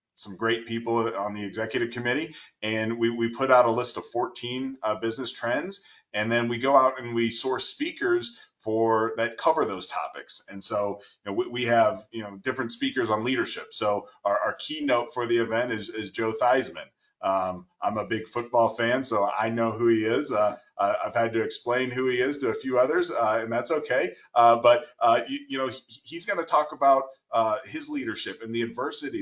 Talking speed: 210 wpm